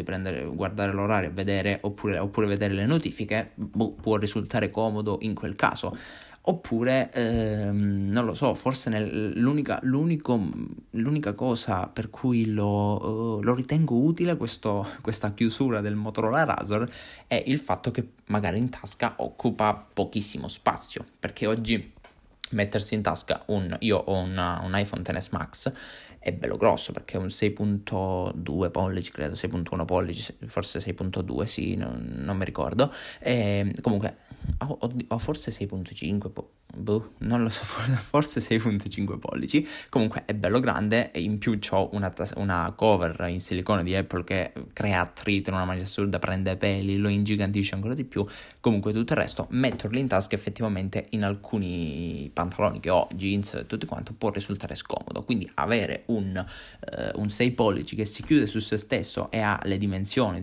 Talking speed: 160 wpm